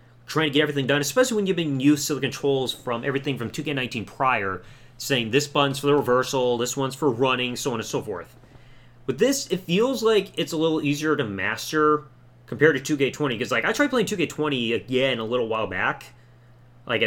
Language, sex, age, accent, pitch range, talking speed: English, male, 30-49, American, 120-145 Hz, 205 wpm